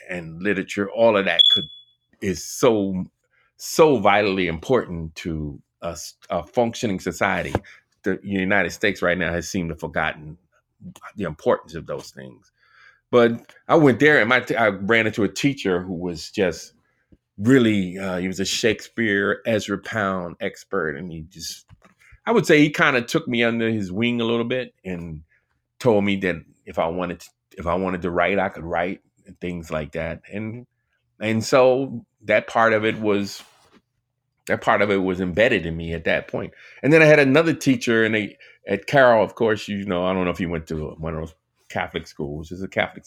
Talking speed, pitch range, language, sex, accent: 195 wpm, 90-120 Hz, English, male, American